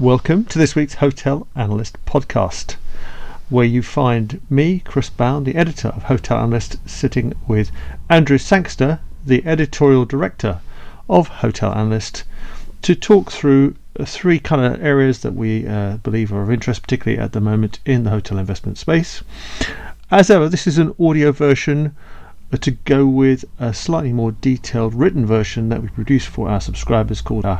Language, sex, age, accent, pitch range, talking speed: English, male, 40-59, British, 105-140 Hz, 165 wpm